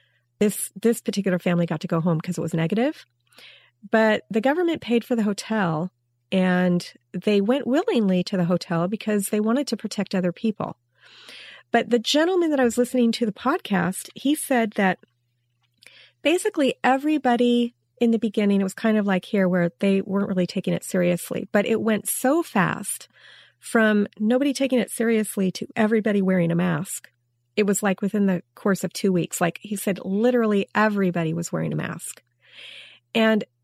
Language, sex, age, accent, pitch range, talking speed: English, female, 40-59, American, 180-235 Hz, 175 wpm